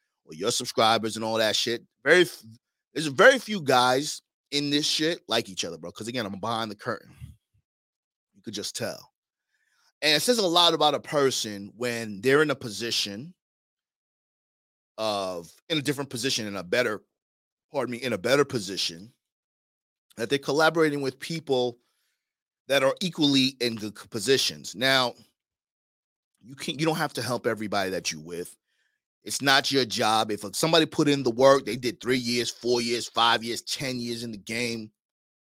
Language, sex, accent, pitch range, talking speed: English, male, American, 110-145 Hz, 170 wpm